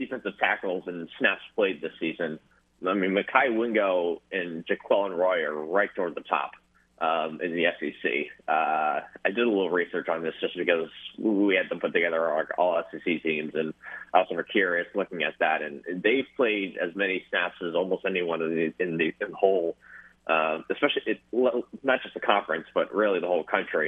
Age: 30-49